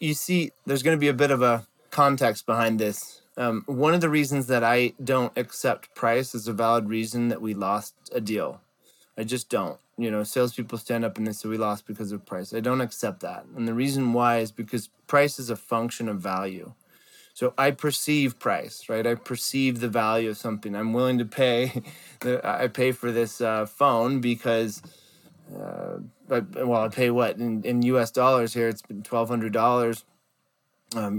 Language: English